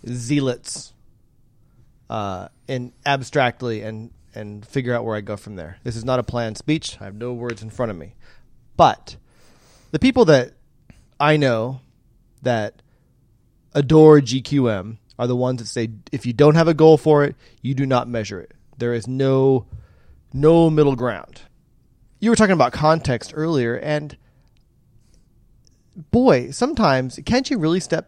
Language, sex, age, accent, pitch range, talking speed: English, male, 20-39, American, 120-160 Hz, 155 wpm